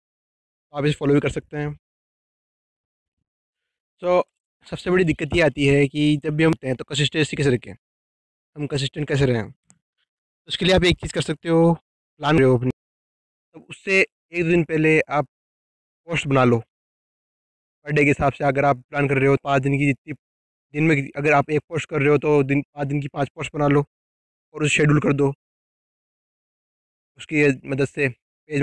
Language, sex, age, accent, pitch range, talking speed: Hindi, male, 20-39, native, 140-155 Hz, 195 wpm